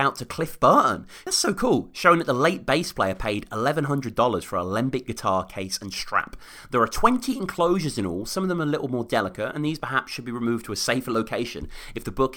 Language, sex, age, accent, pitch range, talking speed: English, male, 30-49, British, 110-185 Hz, 240 wpm